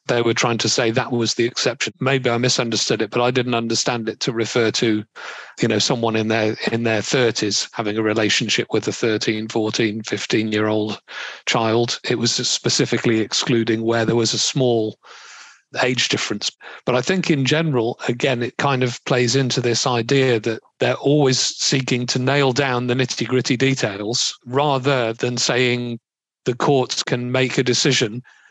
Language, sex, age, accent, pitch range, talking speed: English, male, 40-59, British, 115-130 Hz, 170 wpm